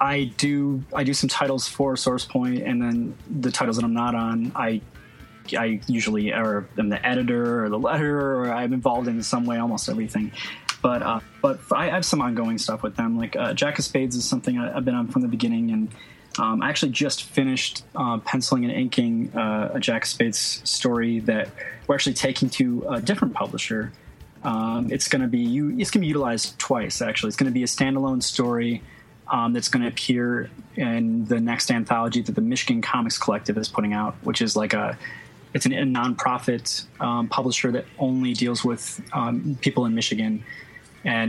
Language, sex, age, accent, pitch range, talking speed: English, male, 20-39, American, 115-160 Hz, 195 wpm